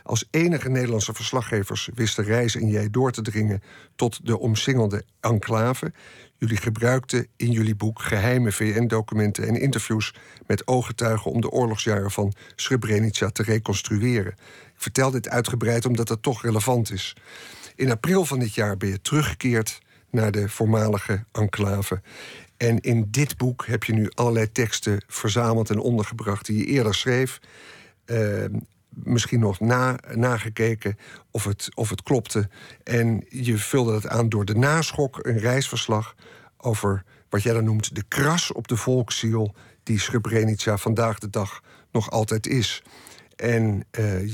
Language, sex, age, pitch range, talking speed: Dutch, male, 50-69, 110-125 Hz, 145 wpm